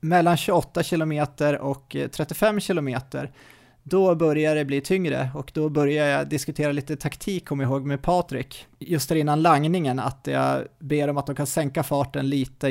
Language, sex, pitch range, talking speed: Swedish, male, 135-155 Hz, 175 wpm